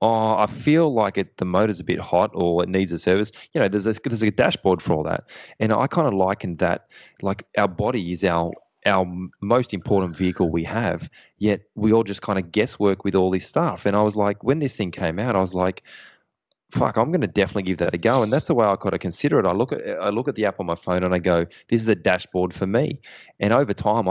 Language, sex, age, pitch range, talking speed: English, male, 20-39, 90-105 Hz, 265 wpm